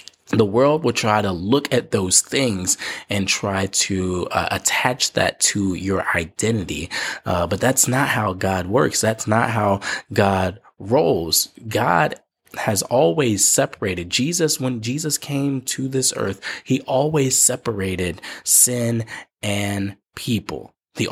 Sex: male